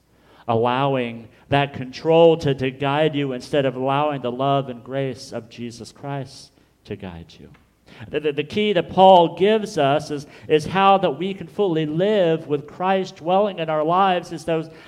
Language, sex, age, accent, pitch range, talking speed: English, male, 50-69, American, 135-175 Hz, 180 wpm